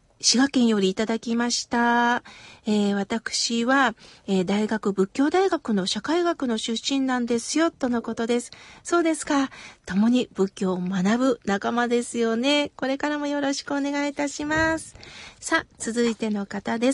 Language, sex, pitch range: Japanese, female, 230-310 Hz